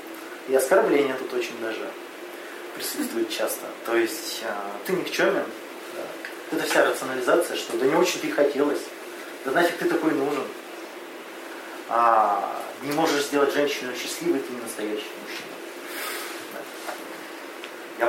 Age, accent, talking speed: 30-49, native, 115 wpm